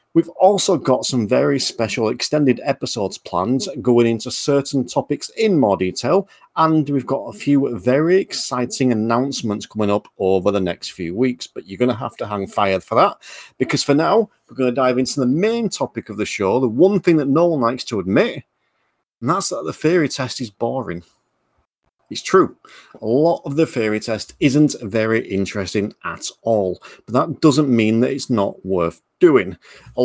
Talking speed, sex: 190 wpm, male